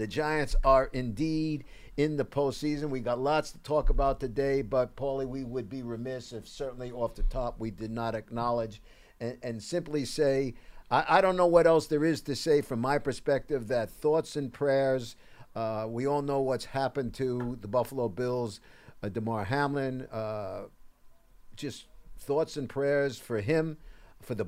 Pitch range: 110-135 Hz